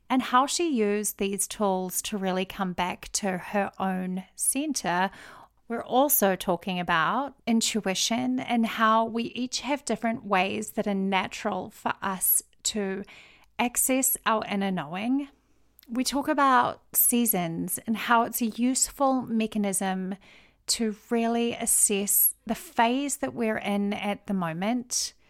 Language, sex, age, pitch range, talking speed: English, female, 30-49, 195-245 Hz, 135 wpm